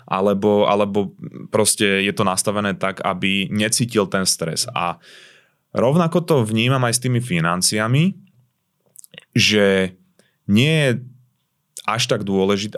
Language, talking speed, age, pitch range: Slovak, 115 wpm, 20-39, 95-125 Hz